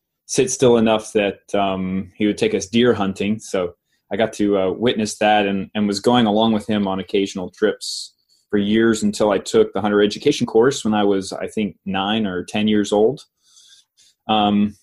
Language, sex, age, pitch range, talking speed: English, male, 20-39, 105-115 Hz, 195 wpm